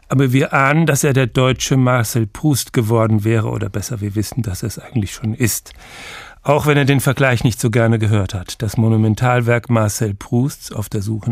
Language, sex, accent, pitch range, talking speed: German, male, German, 105-130 Hz, 195 wpm